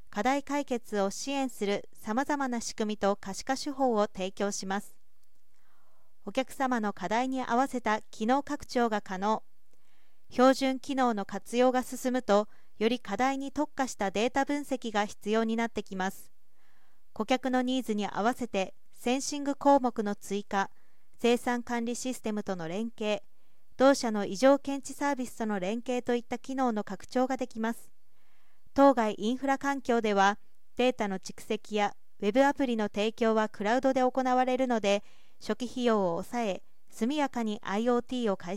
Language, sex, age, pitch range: Japanese, female, 40-59, 210-260 Hz